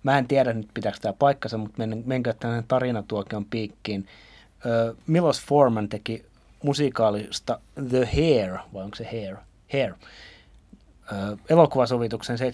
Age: 30-49